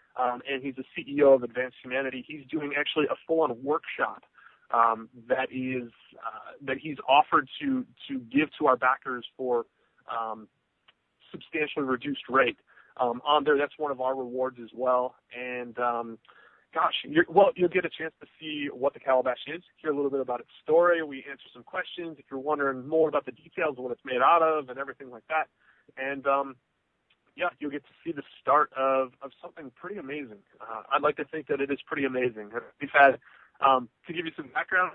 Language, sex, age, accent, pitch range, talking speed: English, male, 30-49, American, 130-160 Hz, 205 wpm